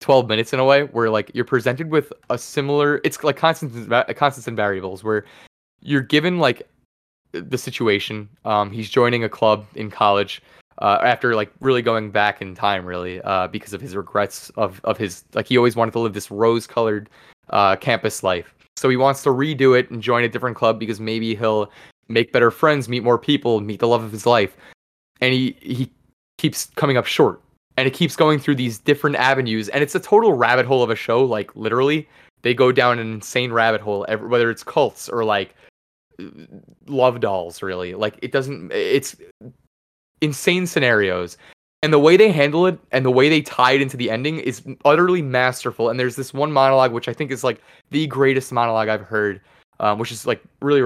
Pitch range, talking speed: 110-135 Hz, 200 wpm